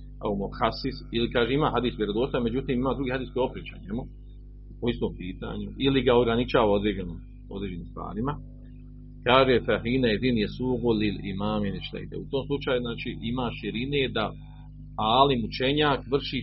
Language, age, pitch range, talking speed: Croatian, 40-59, 105-120 Hz, 140 wpm